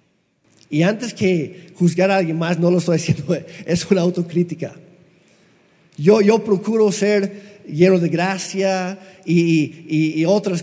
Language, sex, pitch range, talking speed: Spanish, male, 165-210 Hz, 140 wpm